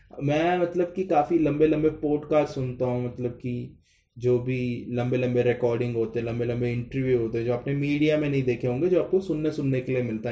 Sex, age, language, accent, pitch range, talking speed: male, 20-39, Hindi, native, 125-155 Hz, 205 wpm